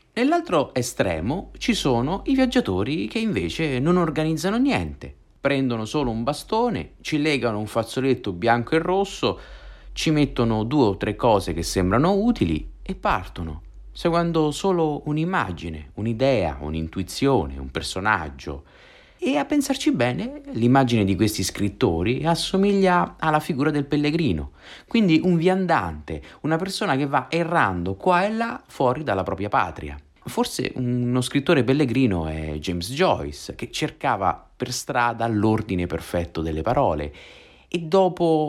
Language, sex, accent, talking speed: Italian, male, native, 135 wpm